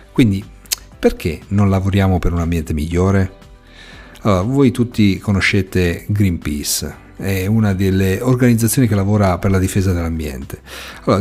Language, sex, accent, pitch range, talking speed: Italian, male, native, 95-120 Hz, 130 wpm